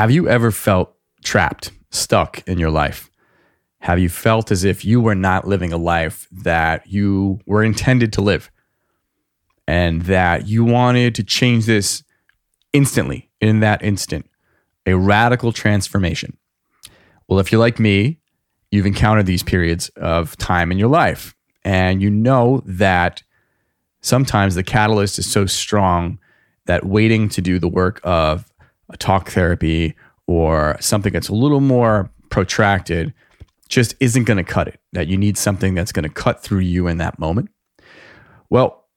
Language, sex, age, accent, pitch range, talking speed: English, male, 30-49, American, 90-110 Hz, 155 wpm